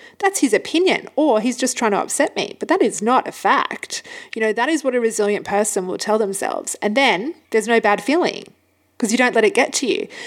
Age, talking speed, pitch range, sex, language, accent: 30-49, 240 wpm, 210-325 Hz, female, English, Australian